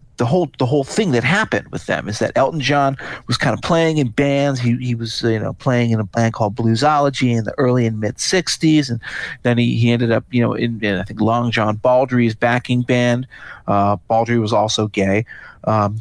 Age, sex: 40-59, male